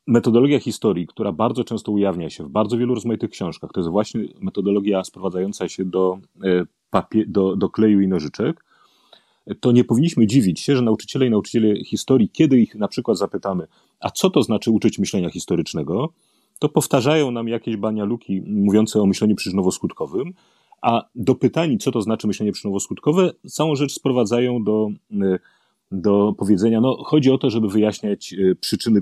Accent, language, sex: native, Polish, male